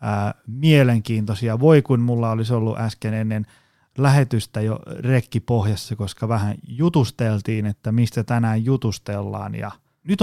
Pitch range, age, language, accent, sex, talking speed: 110-140 Hz, 30-49, Finnish, native, male, 125 wpm